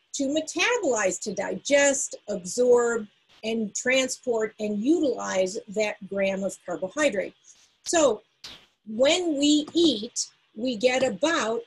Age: 50-69